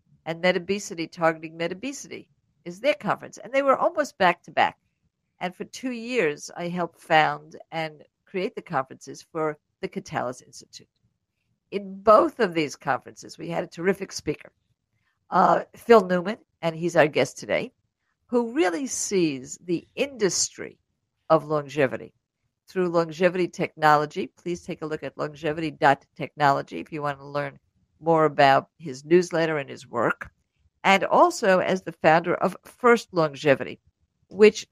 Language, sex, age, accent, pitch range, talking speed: English, female, 50-69, American, 150-190 Hz, 140 wpm